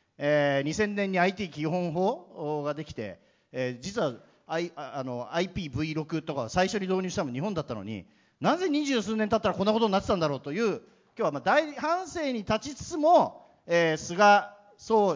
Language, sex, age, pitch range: Japanese, male, 40-59, 145-220 Hz